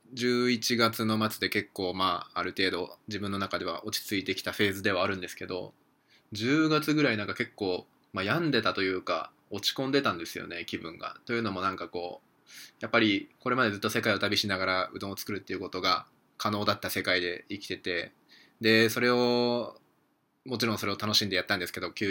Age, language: 20-39, English